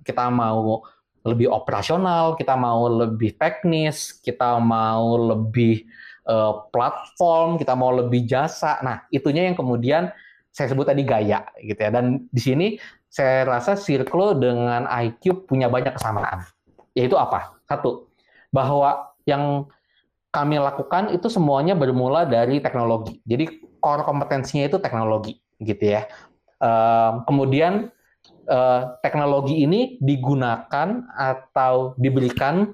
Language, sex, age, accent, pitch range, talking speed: Indonesian, male, 20-39, native, 120-160 Hz, 120 wpm